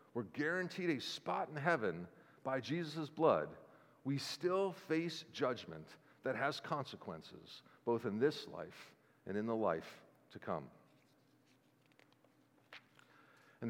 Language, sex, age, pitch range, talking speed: English, male, 50-69, 115-180 Hz, 120 wpm